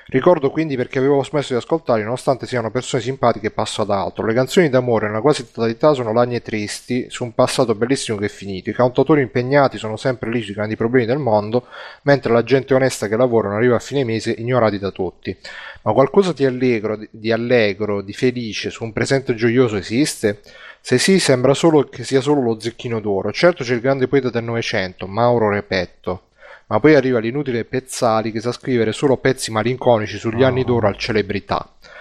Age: 30-49